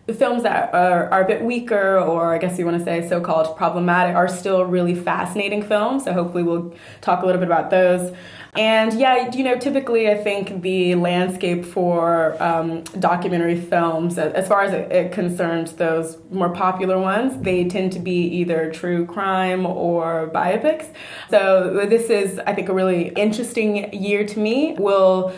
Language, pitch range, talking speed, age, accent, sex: English, 175-205 Hz, 175 wpm, 20-39, American, female